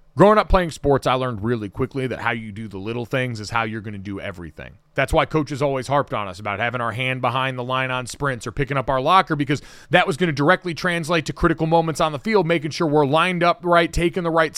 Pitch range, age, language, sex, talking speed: 135-180 Hz, 30-49, English, male, 270 wpm